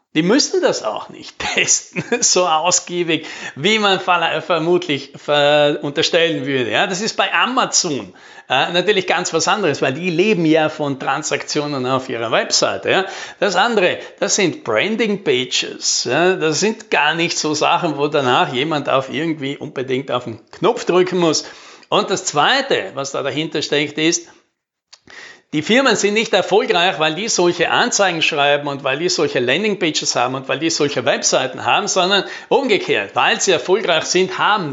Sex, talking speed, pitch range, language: male, 155 wpm, 145-190 Hz, German